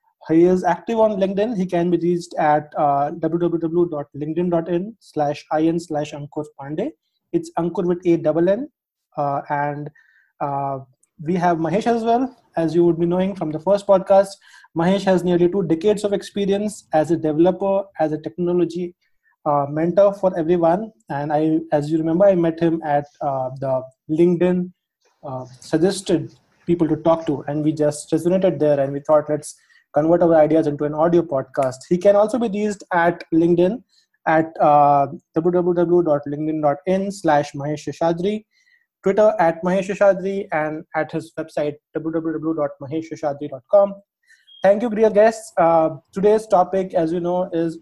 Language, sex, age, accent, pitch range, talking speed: English, male, 30-49, Indian, 155-190 Hz, 155 wpm